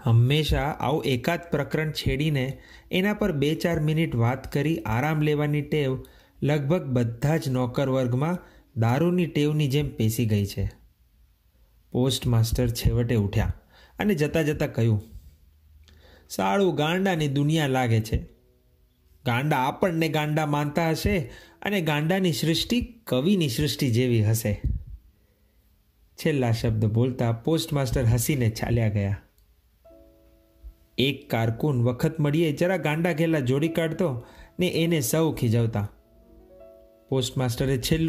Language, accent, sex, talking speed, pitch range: Hindi, native, male, 100 wpm, 110-155 Hz